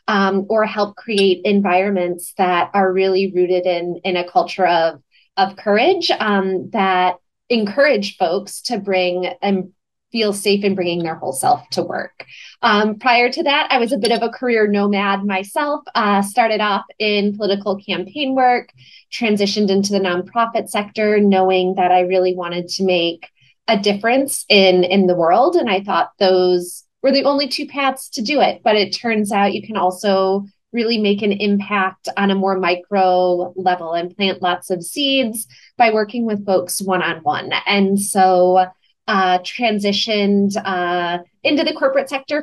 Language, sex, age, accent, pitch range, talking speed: English, female, 20-39, American, 185-235 Hz, 165 wpm